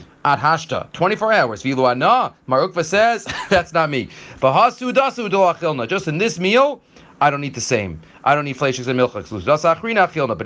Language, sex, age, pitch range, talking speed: English, male, 30-49, 135-180 Hz, 150 wpm